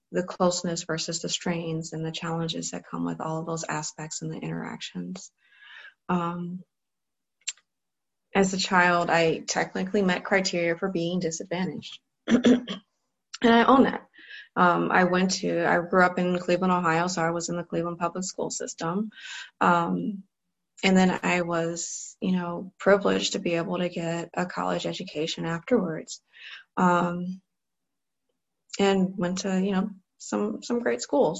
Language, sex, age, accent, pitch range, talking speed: English, female, 20-39, American, 170-195 Hz, 150 wpm